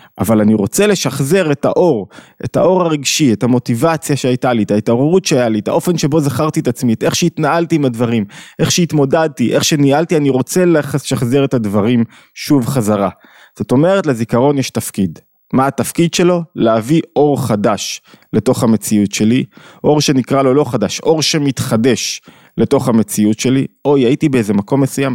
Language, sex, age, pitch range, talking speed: Hebrew, male, 20-39, 120-160 Hz, 160 wpm